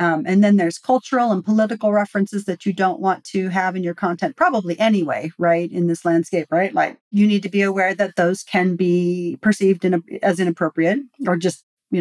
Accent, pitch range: American, 185-230 Hz